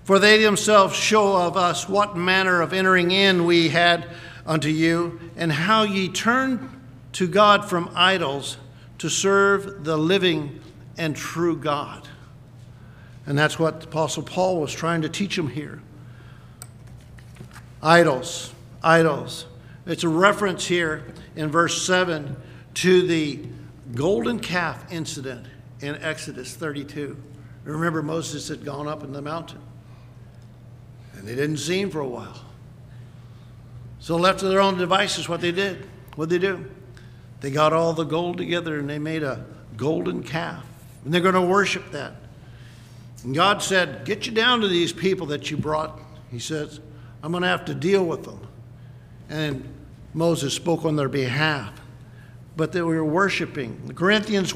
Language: English